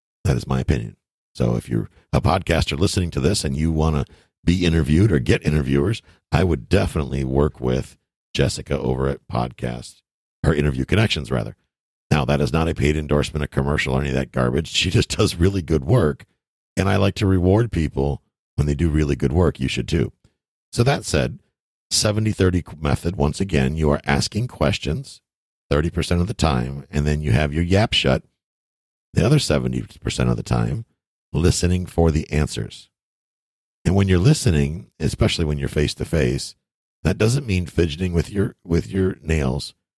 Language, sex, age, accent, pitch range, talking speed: English, male, 50-69, American, 70-95 Hz, 175 wpm